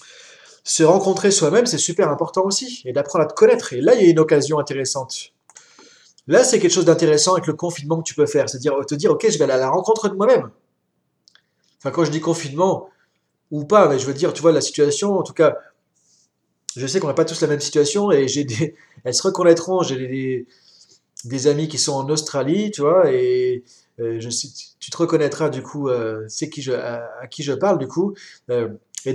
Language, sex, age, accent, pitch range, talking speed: French, male, 20-39, French, 140-190 Hz, 225 wpm